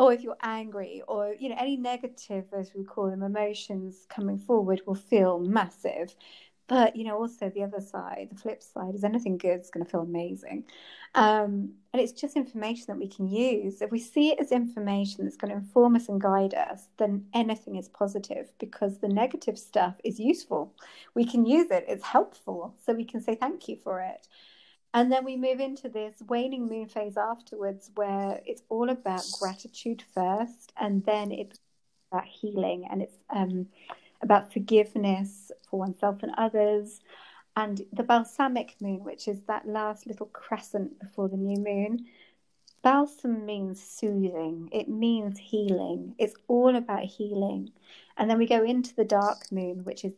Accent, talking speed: British, 175 wpm